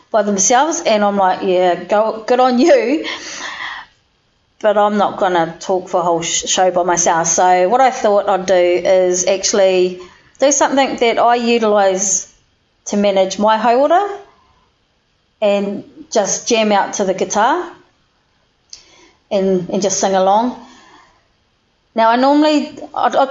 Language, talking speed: English, 140 wpm